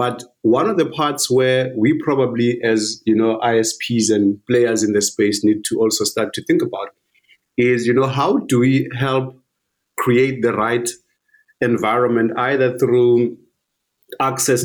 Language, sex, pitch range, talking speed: English, male, 115-145 Hz, 155 wpm